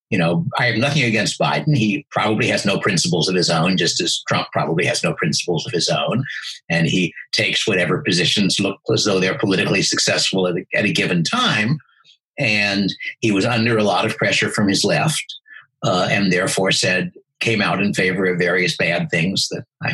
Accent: American